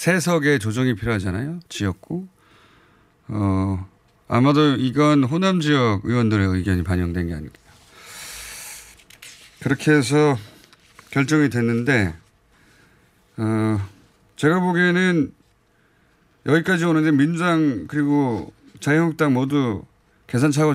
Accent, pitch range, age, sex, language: native, 105-150 Hz, 30-49, male, Korean